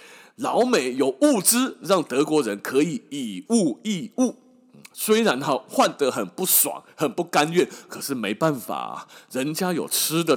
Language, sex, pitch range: Chinese, male, 175-255 Hz